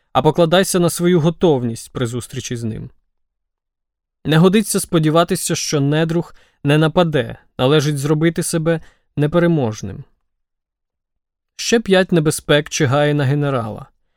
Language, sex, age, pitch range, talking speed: Ukrainian, male, 20-39, 135-170 Hz, 110 wpm